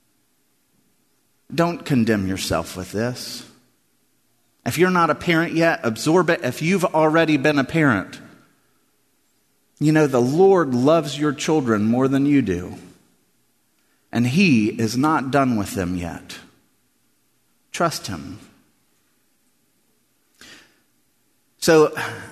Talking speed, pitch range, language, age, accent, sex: 110 wpm, 135-200 Hz, English, 30-49, American, male